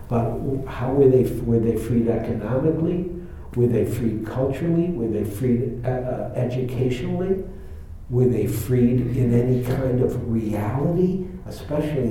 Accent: American